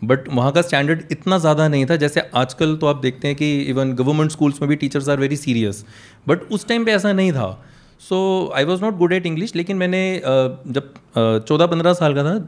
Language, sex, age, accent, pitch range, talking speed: Hindi, male, 30-49, native, 145-190 Hz, 215 wpm